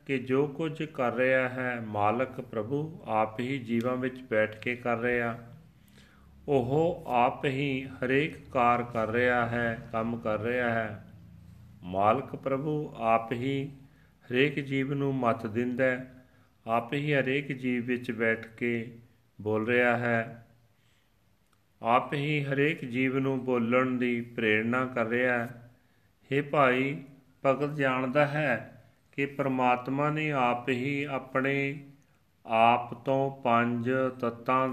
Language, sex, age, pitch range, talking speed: Punjabi, male, 40-59, 115-130 Hz, 125 wpm